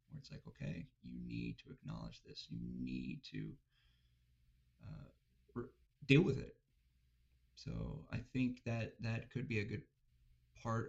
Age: 30-49